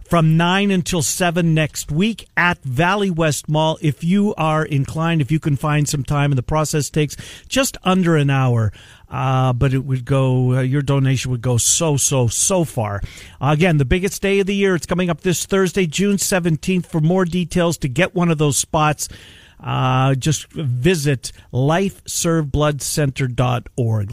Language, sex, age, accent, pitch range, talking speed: English, male, 50-69, American, 130-180 Hz, 175 wpm